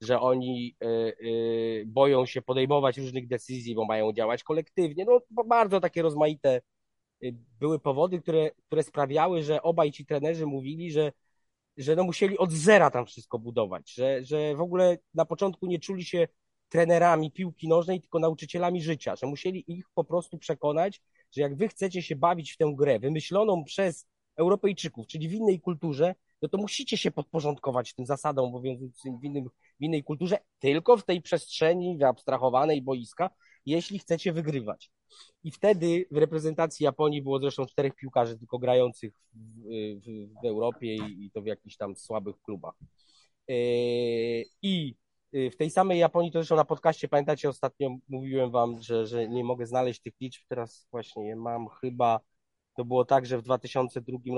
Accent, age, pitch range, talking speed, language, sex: native, 20-39, 125-165 Hz, 165 wpm, Polish, male